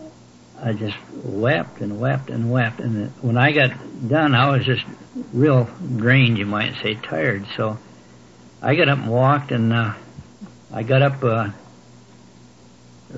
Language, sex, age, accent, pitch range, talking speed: English, male, 60-79, American, 100-125 Hz, 150 wpm